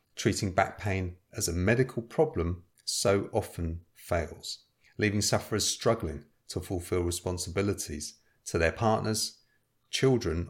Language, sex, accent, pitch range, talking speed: English, male, British, 90-115 Hz, 115 wpm